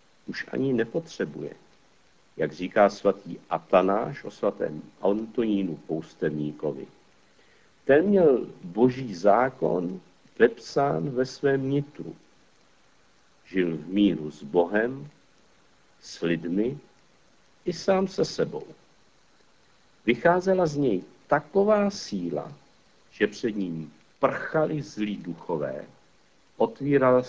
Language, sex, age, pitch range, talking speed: Czech, male, 60-79, 100-140 Hz, 90 wpm